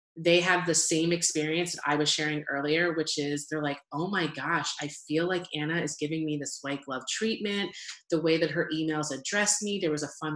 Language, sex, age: English, female, 30-49